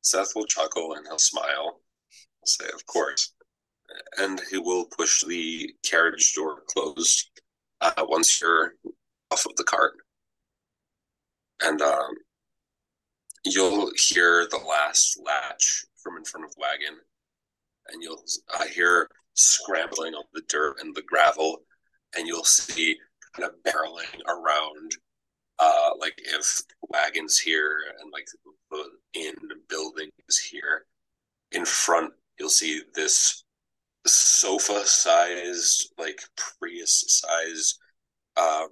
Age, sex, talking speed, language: 30-49, male, 120 wpm, English